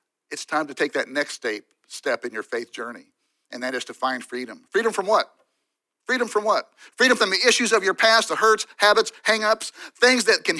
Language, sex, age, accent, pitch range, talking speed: English, male, 50-69, American, 160-235 Hz, 210 wpm